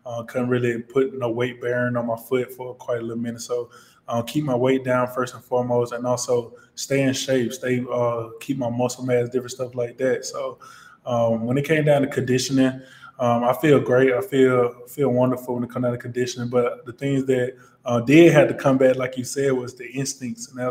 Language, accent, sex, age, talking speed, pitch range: English, American, male, 20-39, 230 wpm, 120-130 Hz